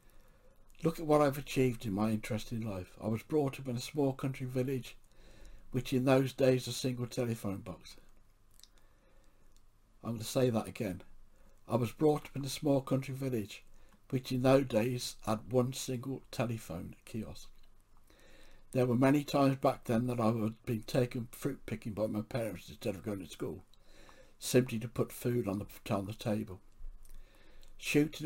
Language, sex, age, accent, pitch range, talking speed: English, male, 60-79, British, 105-130 Hz, 170 wpm